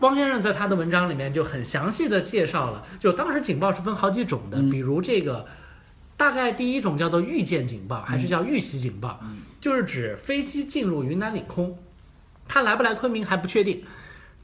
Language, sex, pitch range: Chinese, male, 140-210 Hz